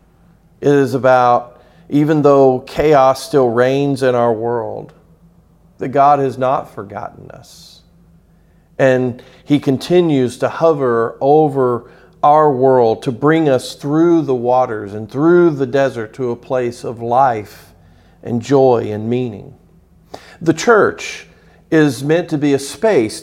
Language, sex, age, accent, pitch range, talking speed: English, male, 50-69, American, 120-155 Hz, 135 wpm